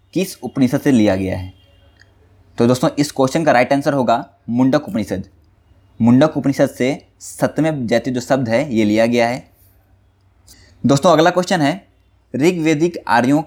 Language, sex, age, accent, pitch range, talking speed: Hindi, male, 20-39, native, 95-145 Hz, 155 wpm